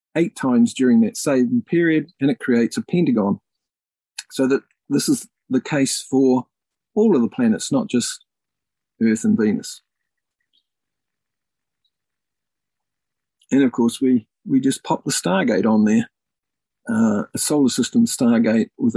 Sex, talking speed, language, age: male, 140 wpm, English, 50-69